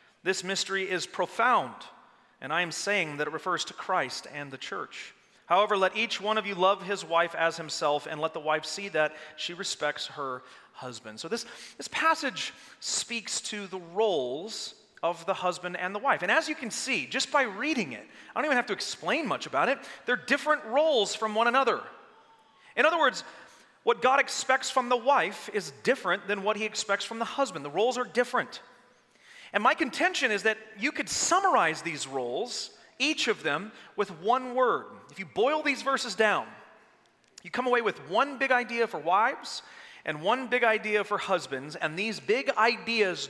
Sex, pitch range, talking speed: male, 175-250 Hz, 190 wpm